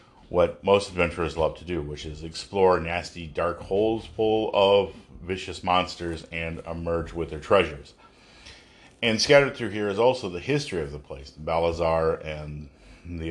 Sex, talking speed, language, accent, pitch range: male, 160 wpm, English, American, 85-110 Hz